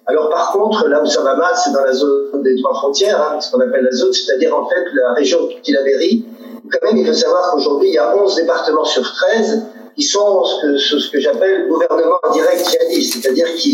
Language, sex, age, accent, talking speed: French, male, 50-69, French, 235 wpm